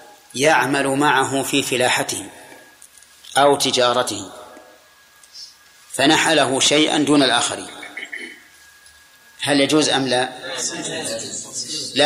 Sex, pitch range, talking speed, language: male, 135-165 Hz, 75 wpm, Arabic